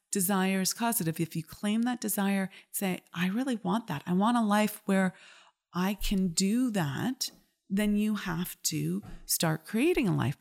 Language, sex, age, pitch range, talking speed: English, female, 30-49, 180-235 Hz, 175 wpm